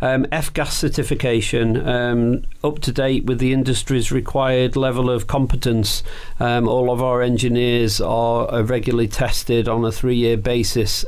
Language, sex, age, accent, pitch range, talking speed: English, male, 40-59, British, 110-120 Hz, 150 wpm